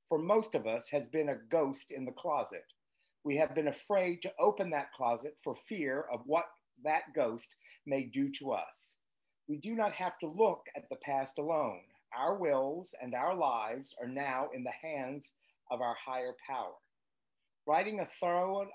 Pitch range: 135-180 Hz